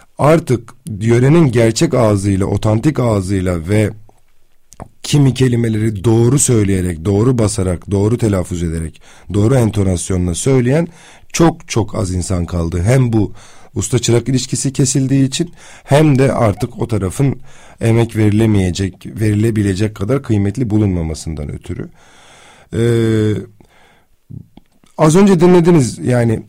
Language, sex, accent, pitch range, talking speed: Turkish, male, native, 100-140 Hz, 105 wpm